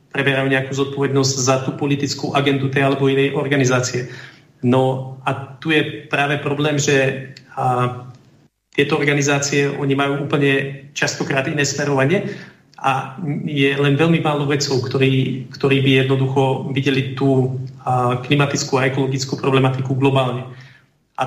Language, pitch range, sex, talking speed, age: Slovak, 130-145 Hz, male, 120 wpm, 40-59